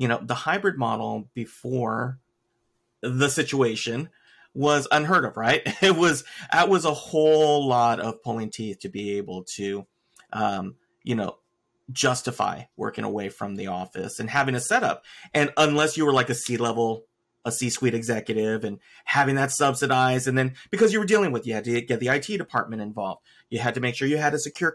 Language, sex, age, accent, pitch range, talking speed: English, male, 30-49, American, 115-155 Hz, 185 wpm